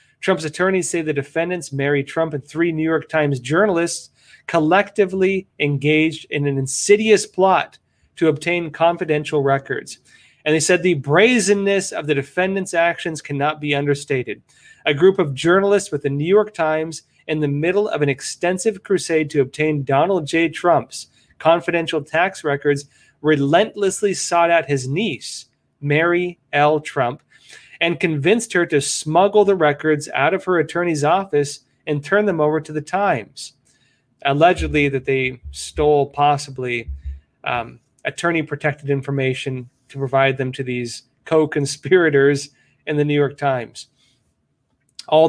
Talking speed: 140 wpm